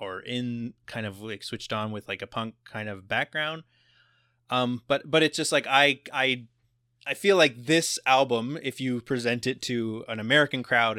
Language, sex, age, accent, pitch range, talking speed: English, male, 20-39, American, 105-130 Hz, 190 wpm